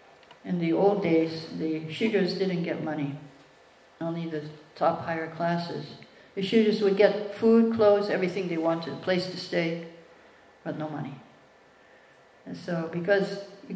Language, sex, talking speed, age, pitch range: English, female, 150 wpm, 60-79, 165-200 Hz